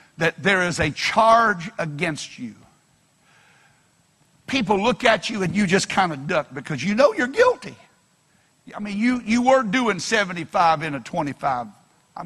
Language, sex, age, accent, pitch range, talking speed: English, male, 60-79, American, 170-230 Hz, 160 wpm